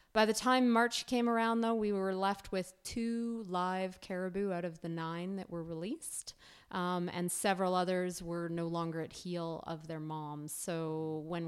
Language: English